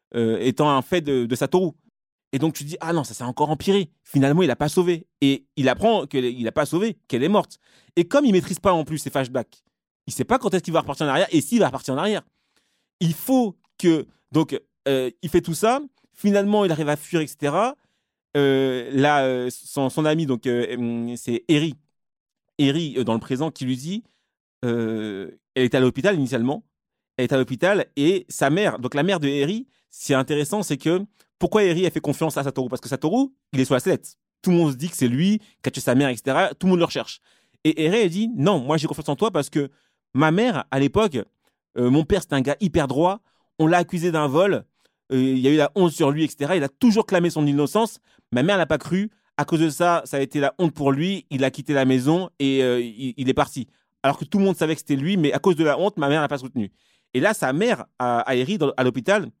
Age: 30-49